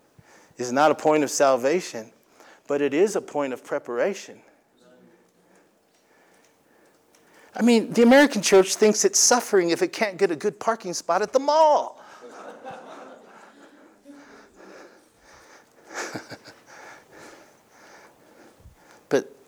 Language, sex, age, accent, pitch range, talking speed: English, male, 50-69, American, 150-235 Hz, 100 wpm